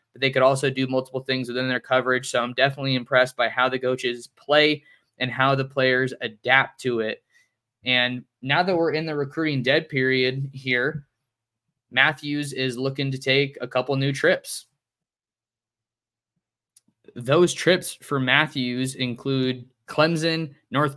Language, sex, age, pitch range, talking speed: English, male, 20-39, 125-140 Hz, 150 wpm